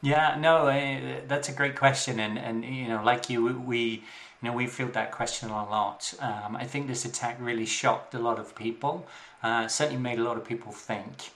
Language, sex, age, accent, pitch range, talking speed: English, male, 30-49, British, 115-130 Hz, 220 wpm